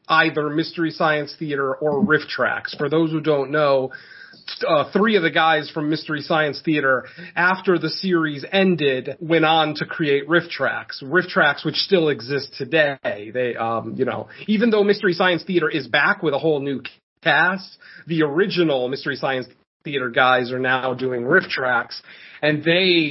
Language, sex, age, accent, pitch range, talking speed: English, male, 30-49, American, 140-170 Hz, 170 wpm